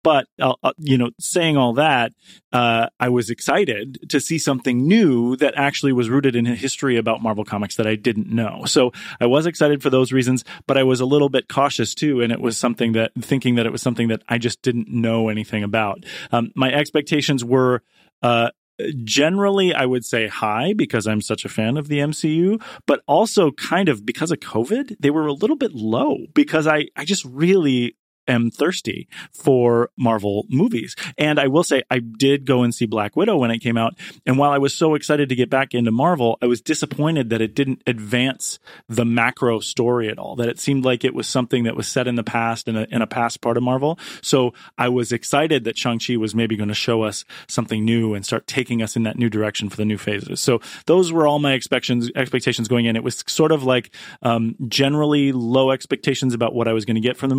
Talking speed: 225 wpm